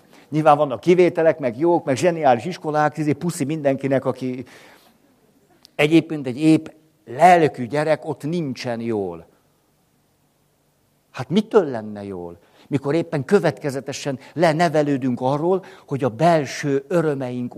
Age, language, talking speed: 60-79, Hungarian, 115 wpm